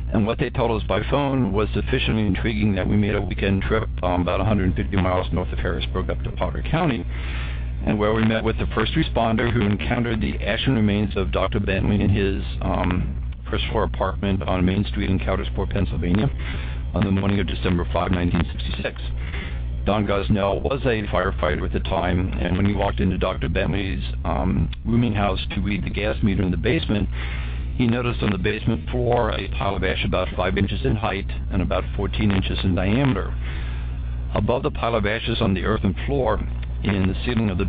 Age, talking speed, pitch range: 50-69, 195 wpm, 65-105 Hz